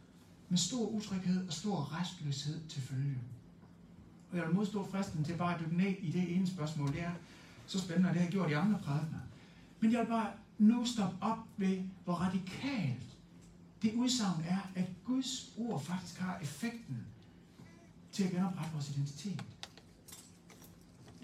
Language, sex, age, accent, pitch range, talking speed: Danish, male, 60-79, native, 145-210 Hz, 165 wpm